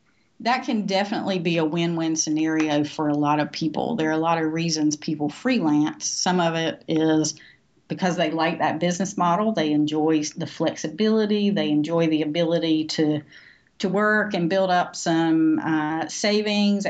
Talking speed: 165 wpm